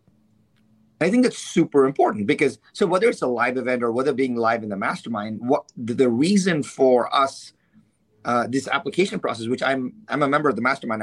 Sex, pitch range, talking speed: male, 115-170 Hz, 200 wpm